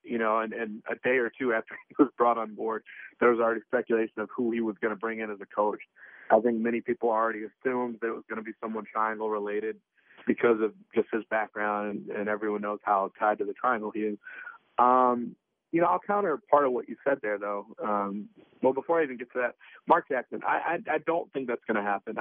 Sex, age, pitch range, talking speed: male, 30-49, 110-135 Hz, 240 wpm